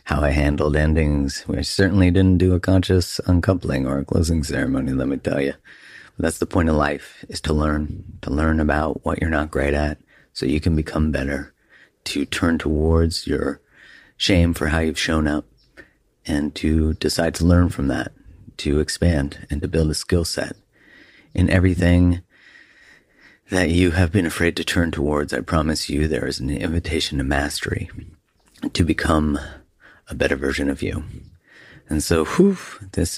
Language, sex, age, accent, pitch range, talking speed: English, male, 30-49, American, 75-90 Hz, 170 wpm